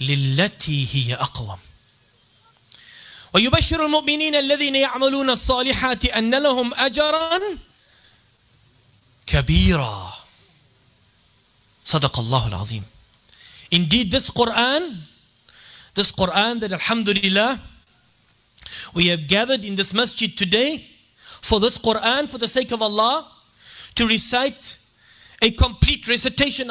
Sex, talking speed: male, 90 wpm